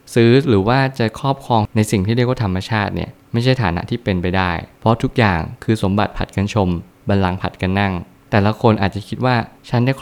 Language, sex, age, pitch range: Thai, male, 20-39, 95-115 Hz